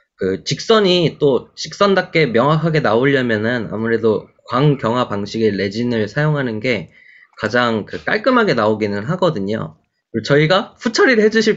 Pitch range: 110-185 Hz